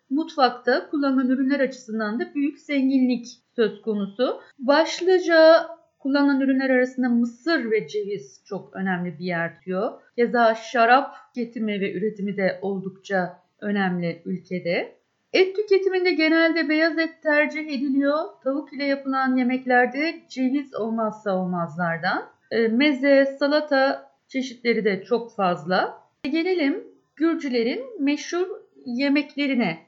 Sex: female